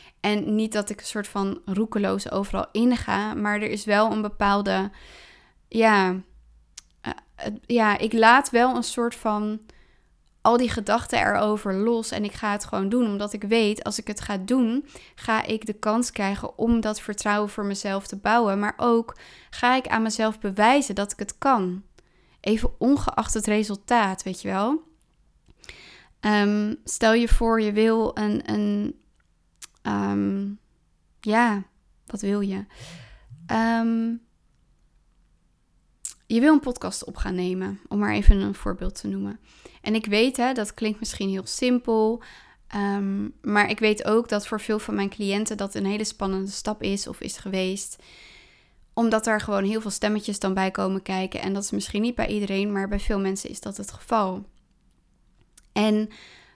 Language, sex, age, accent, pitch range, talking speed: Dutch, female, 20-39, Dutch, 195-225 Hz, 160 wpm